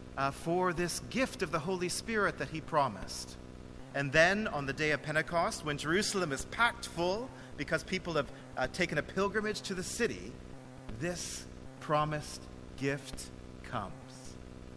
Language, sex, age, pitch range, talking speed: English, male, 40-59, 130-195 Hz, 150 wpm